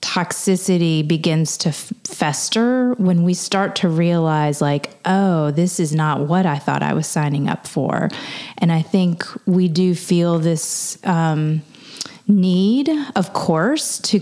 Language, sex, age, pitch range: English, female, 30-49, 160-195 Hz